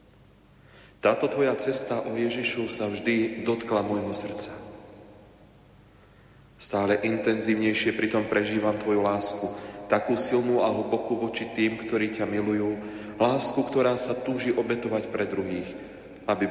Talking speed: 120 wpm